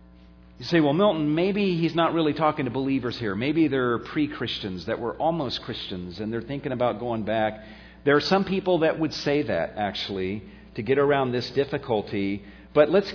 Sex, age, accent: male, 50-69, American